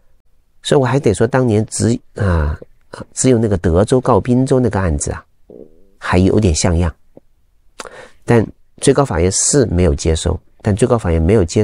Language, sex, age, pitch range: Chinese, male, 40-59, 85-120 Hz